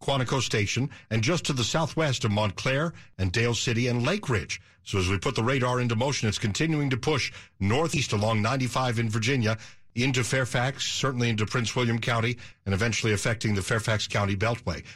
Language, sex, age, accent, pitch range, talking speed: English, male, 50-69, American, 110-145 Hz, 185 wpm